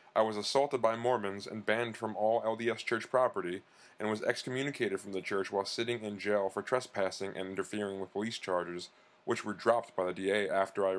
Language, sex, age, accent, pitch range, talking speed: English, male, 20-39, American, 100-115 Hz, 200 wpm